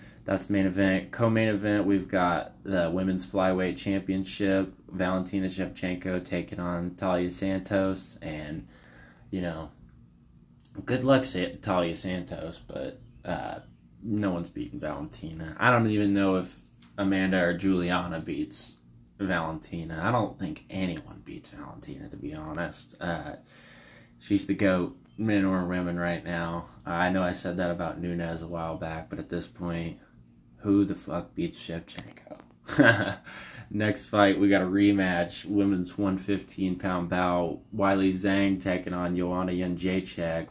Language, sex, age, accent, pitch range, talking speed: English, male, 20-39, American, 85-100 Hz, 140 wpm